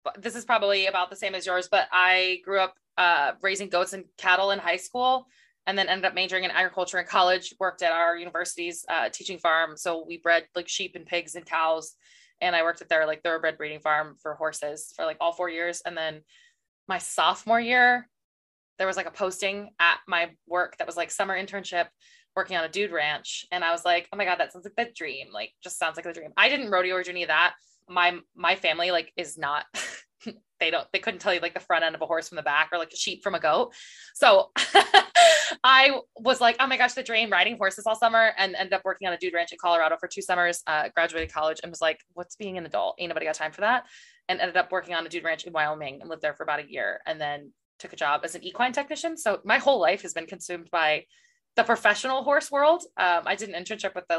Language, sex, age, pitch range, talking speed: English, female, 20-39, 165-200 Hz, 250 wpm